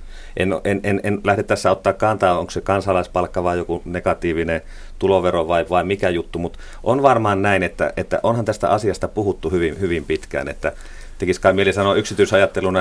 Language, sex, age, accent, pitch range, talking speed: Finnish, male, 30-49, native, 85-105 Hz, 180 wpm